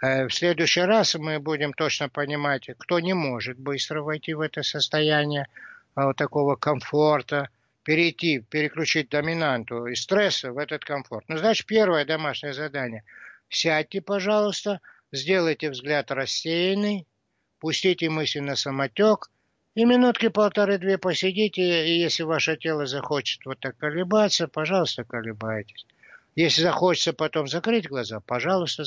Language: Russian